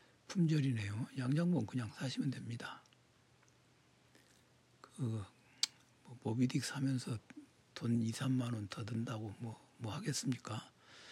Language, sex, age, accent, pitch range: Korean, male, 60-79, native, 115-140 Hz